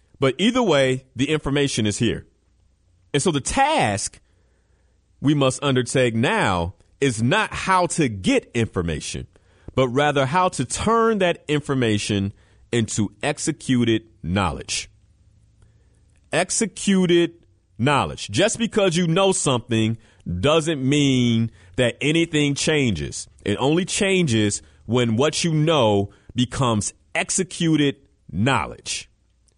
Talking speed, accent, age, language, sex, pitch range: 110 wpm, American, 40-59, English, male, 100-145 Hz